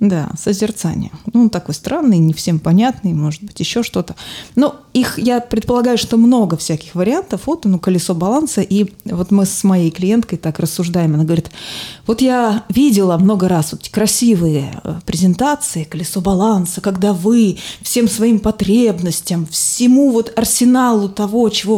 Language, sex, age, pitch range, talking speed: Russian, female, 20-39, 185-240 Hz, 155 wpm